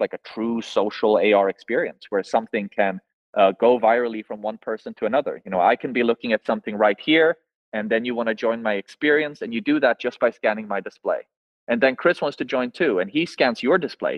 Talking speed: 235 wpm